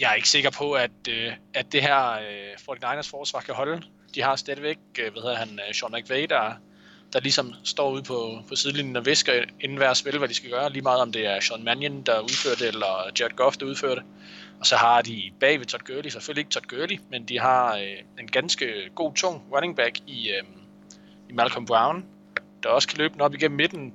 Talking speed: 215 wpm